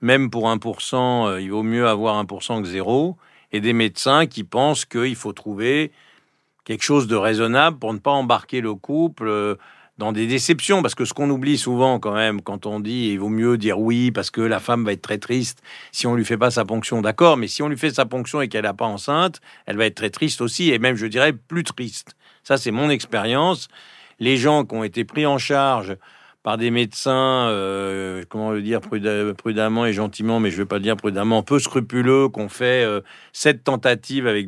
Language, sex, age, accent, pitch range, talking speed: French, male, 50-69, French, 110-135 Hz, 215 wpm